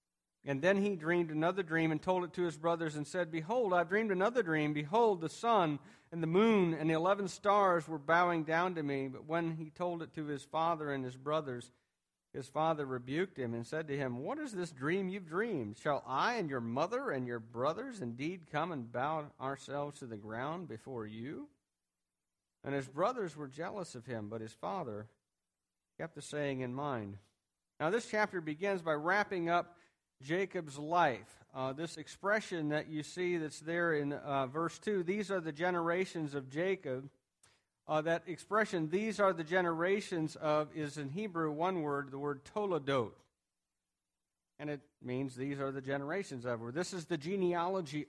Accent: American